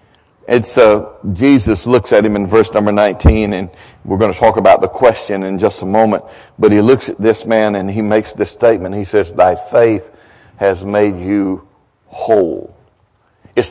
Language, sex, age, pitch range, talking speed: English, male, 60-79, 105-150 Hz, 190 wpm